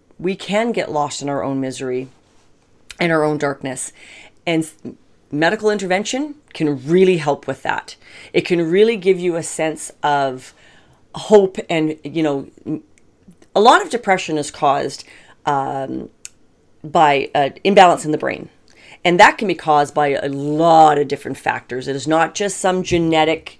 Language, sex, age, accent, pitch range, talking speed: English, female, 40-59, American, 150-185 Hz, 160 wpm